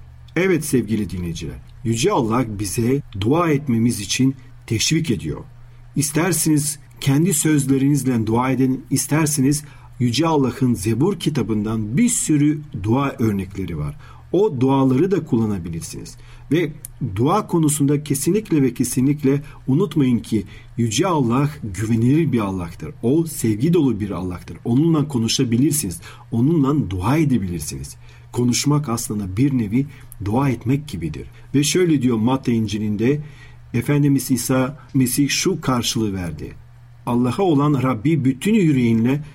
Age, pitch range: 40-59, 115-145 Hz